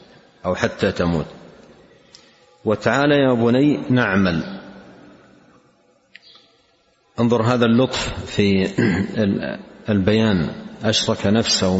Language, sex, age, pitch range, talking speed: Arabic, male, 50-69, 100-130 Hz, 70 wpm